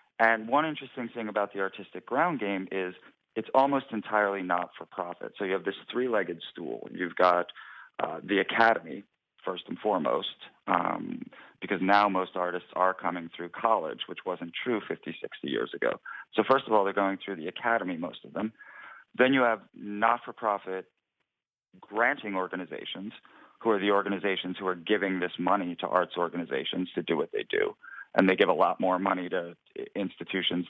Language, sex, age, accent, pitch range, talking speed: English, male, 40-59, American, 90-105 Hz, 170 wpm